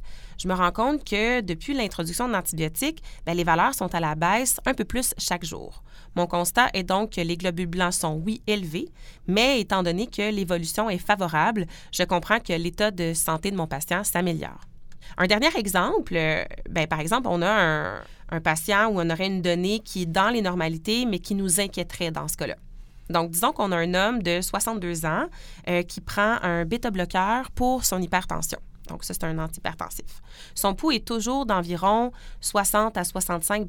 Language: English